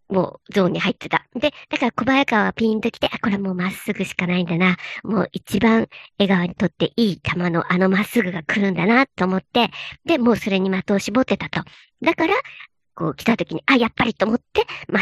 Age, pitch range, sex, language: 50-69, 185-265 Hz, male, Japanese